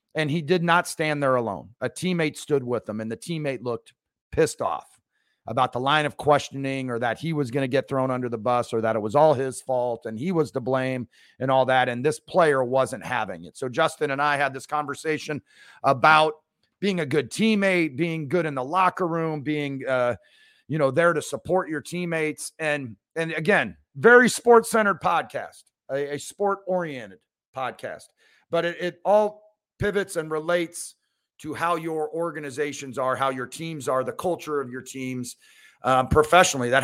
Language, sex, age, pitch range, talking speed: English, male, 40-59, 130-170 Hz, 190 wpm